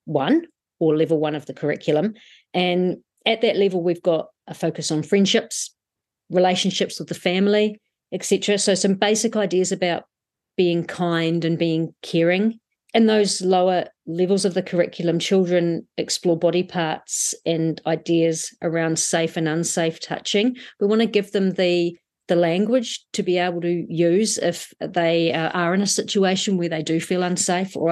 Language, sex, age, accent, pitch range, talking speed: English, female, 40-59, Australian, 165-195 Hz, 160 wpm